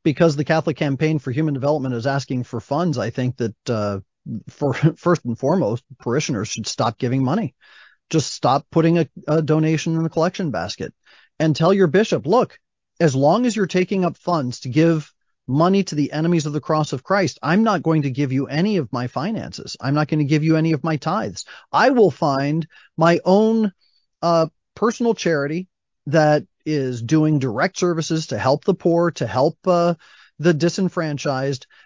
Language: English